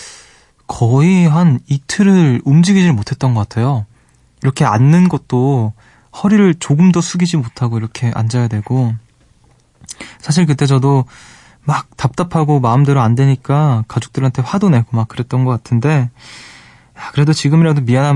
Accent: native